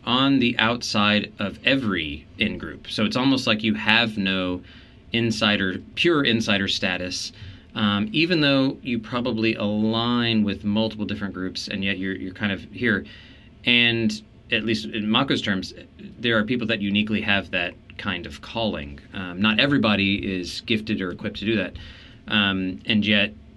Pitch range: 100-115 Hz